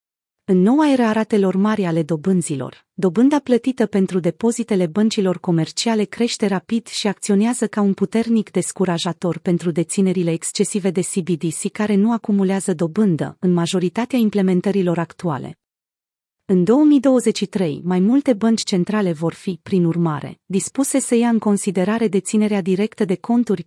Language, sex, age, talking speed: Romanian, female, 30-49, 135 wpm